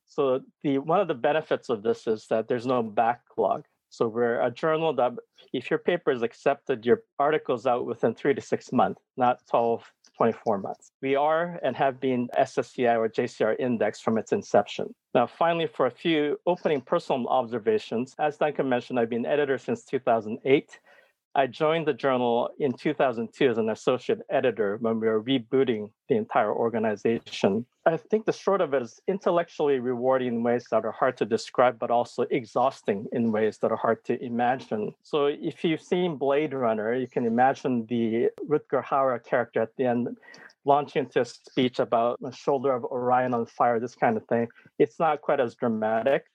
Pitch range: 120-150 Hz